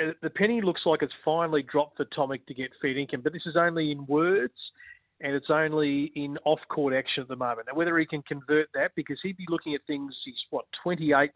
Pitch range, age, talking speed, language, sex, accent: 130-155 Hz, 40-59, 225 wpm, English, male, Australian